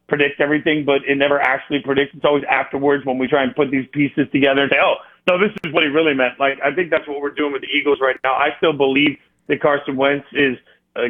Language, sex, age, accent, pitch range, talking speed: English, male, 40-59, American, 135-150 Hz, 260 wpm